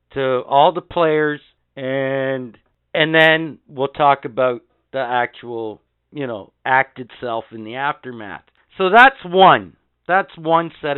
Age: 50-69